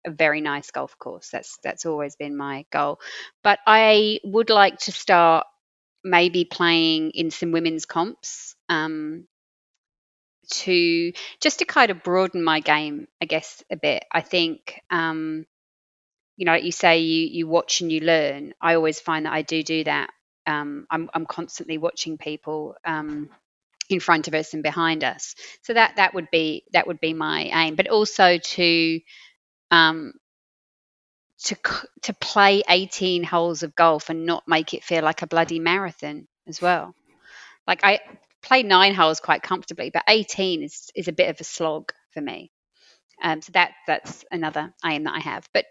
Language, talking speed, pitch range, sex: English, 170 wpm, 155-180 Hz, female